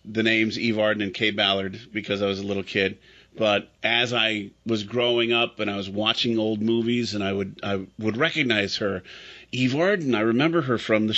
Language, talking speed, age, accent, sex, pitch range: English, 210 wpm, 40-59, American, male, 100-120 Hz